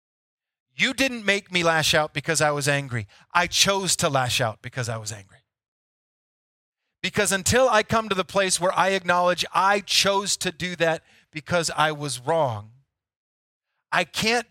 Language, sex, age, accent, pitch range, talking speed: English, male, 40-59, American, 155-210 Hz, 165 wpm